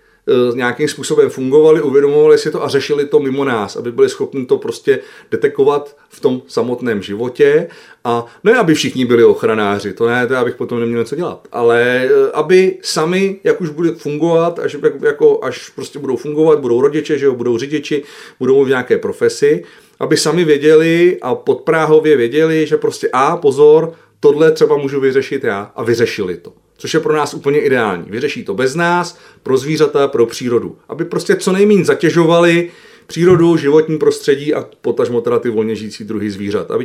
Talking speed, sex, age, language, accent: 175 wpm, male, 40-59, Czech, native